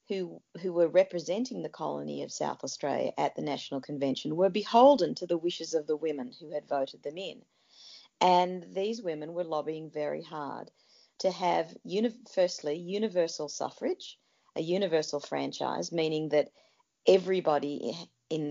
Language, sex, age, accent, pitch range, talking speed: English, female, 40-59, Australian, 150-185 Hz, 150 wpm